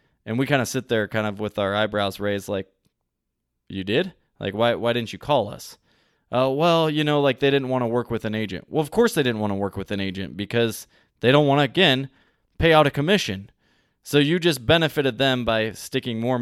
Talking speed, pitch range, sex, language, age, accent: 235 wpm, 105-130 Hz, male, English, 20-39, American